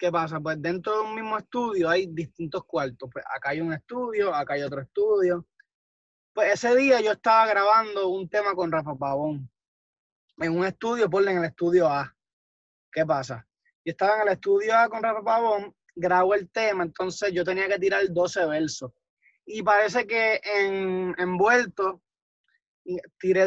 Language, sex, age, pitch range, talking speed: Spanish, male, 20-39, 175-215 Hz, 170 wpm